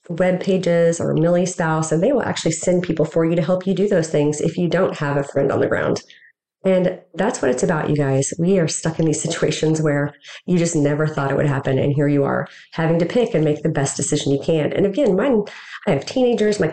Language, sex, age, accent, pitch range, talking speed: English, female, 30-49, American, 150-180 Hz, 250 wpm